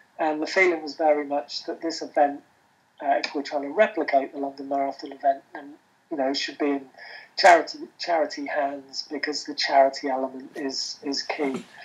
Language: English